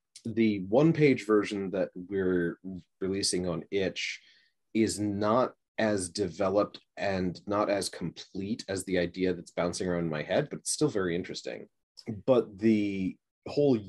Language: English